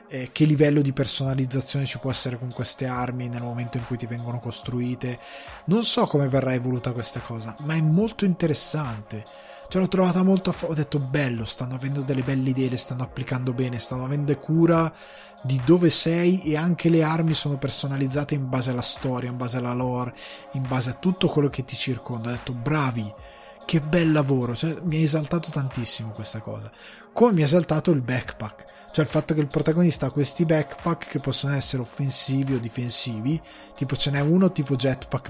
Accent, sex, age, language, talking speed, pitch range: native, male, 20-39, Italian, 190 wpm, 125-155 Hz